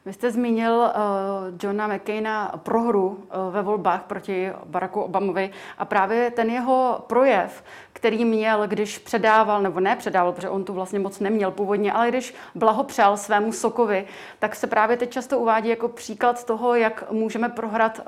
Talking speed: 160 wpm